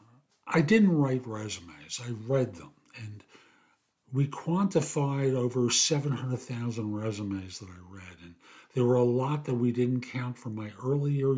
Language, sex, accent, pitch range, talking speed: English, male, American, 110-145 Hz, 150 wpm